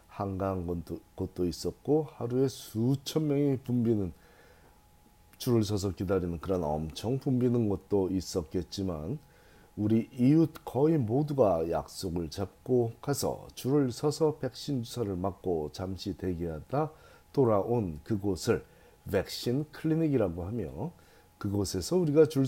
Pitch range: 95-135 Hz